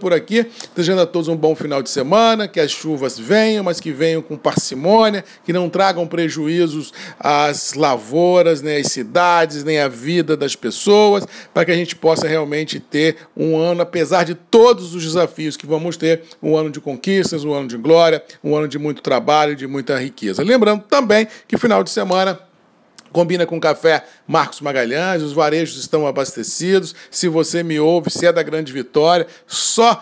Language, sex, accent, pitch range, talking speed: Portuguese, male, Brazilian, 155-185 Hz, 180 wpm